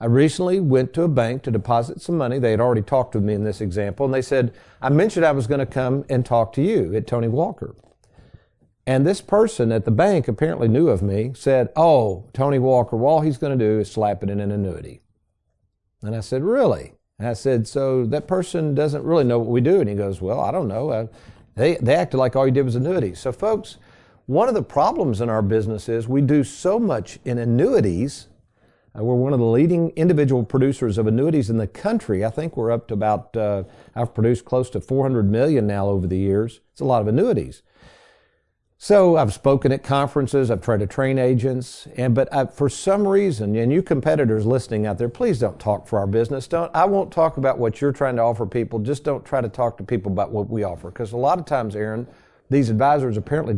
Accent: American